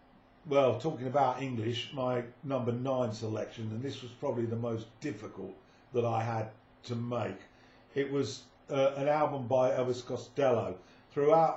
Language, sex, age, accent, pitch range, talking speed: English, male, 50-69, British, 115-135 Hz, 150 wpm